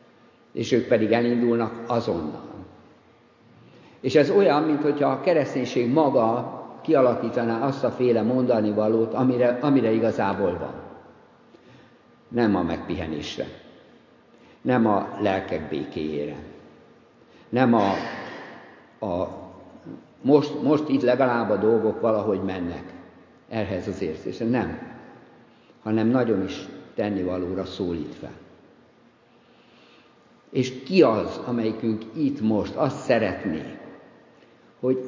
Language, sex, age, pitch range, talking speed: Hungarian, male, 60-79, 105-125 Hz, 100 wpm